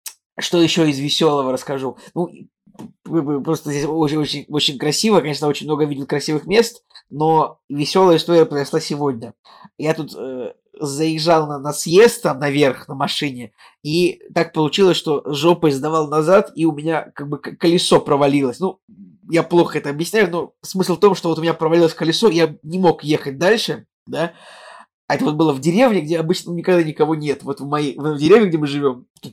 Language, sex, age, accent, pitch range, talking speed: Russian, male, 20-39, native, 145-170 Hz, 180 wpm